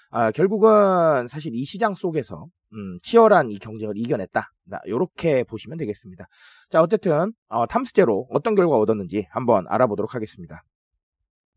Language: Korean